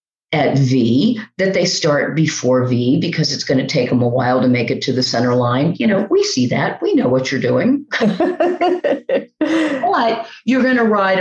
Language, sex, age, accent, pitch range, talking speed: English, female, 50-69, American, 145-185 Hz, 200 wpm